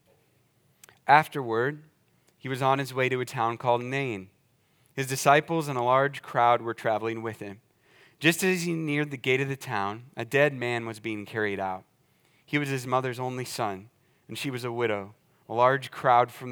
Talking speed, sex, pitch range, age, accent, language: 190 wpm, male, 115-150 Hz, 30-49, American, English